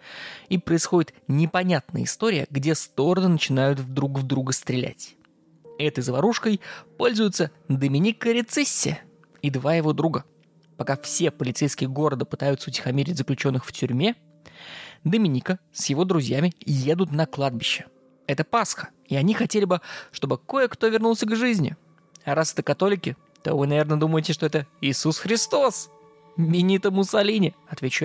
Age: 20-39